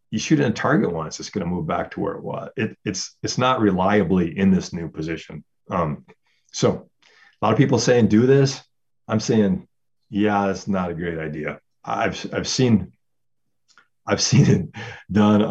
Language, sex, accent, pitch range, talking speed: English, male, American, 85-125 Hz, 180 wpm